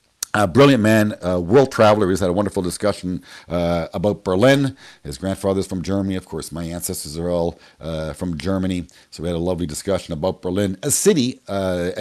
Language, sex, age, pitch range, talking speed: English, male, 50-69, 90-120 Hz, 190 wpm